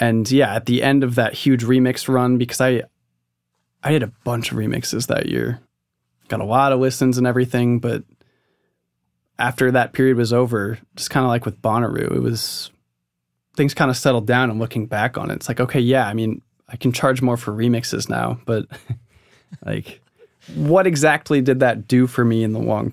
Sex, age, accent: male, 20-39, American